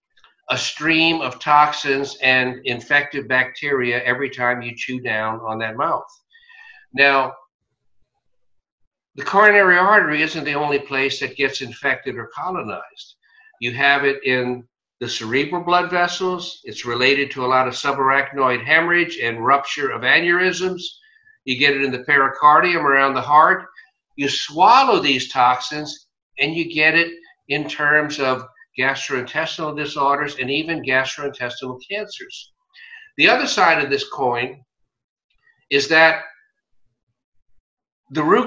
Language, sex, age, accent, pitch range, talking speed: English, male, 60-79, American, 125-165 Hz, 130 wpm